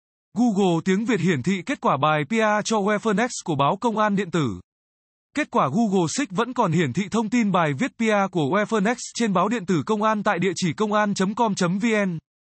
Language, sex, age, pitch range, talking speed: Vietnamese, male, 20-39, 175-225 Hz, 205 wpm